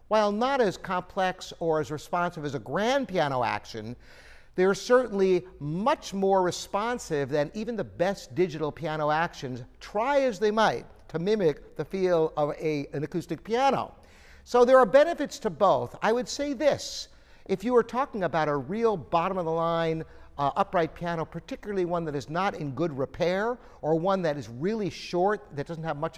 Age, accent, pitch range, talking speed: 50-69, American, 150-230 Hz, 180 wpm